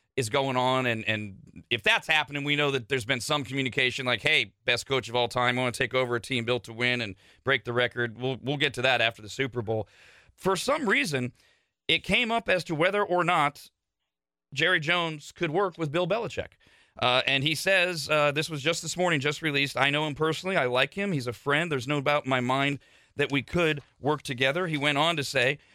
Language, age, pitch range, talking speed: English, 40-59, 125-170 Hz, 235 wpm